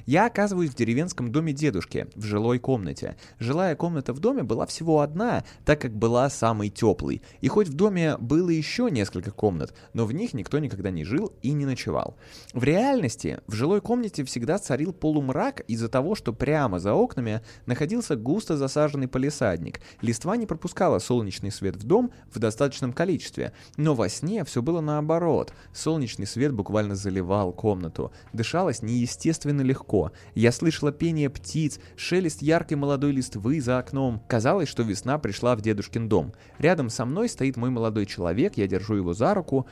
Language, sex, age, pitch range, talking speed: Russian, male, 20-39, 100-145 Hz, 165 wpm